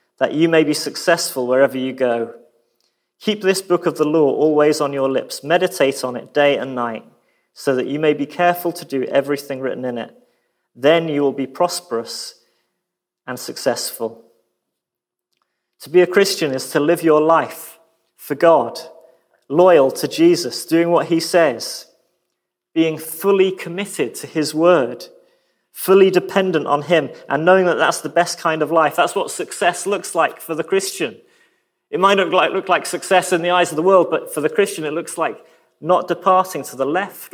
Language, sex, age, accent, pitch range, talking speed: English, male, 30-49, British, 150-185 Hz, 180 wpm